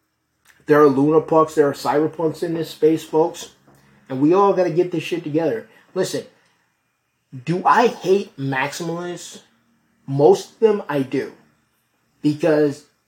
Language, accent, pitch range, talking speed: English, American, 135-175 Hz, 140 wpm